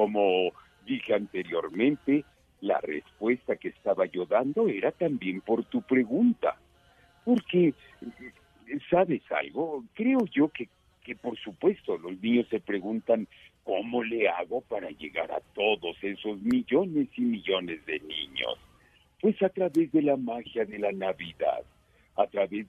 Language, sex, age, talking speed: Spanish, male, 60-79, 135 wpm